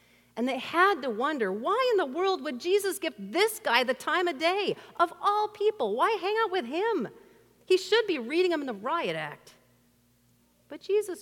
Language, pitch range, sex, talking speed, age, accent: English, 185-290 Hz, female, 200 wpm, 50-69, American